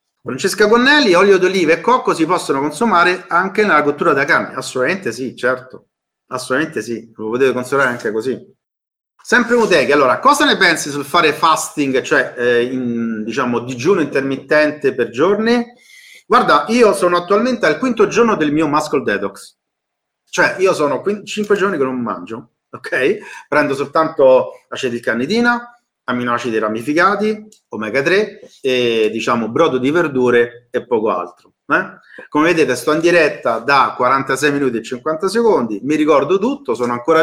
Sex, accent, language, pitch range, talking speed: male, native, Italian, 130-205 Hz, 155 wpm